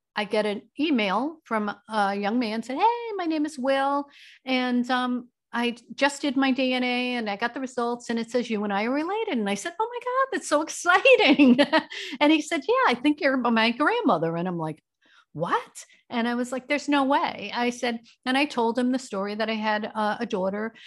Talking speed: 220 wpm